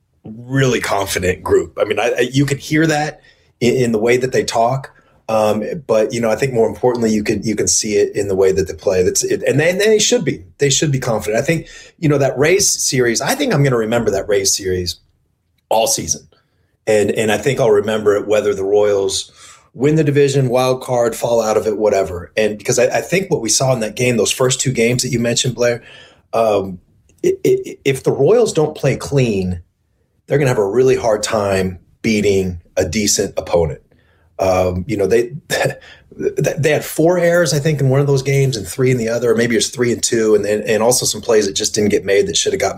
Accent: American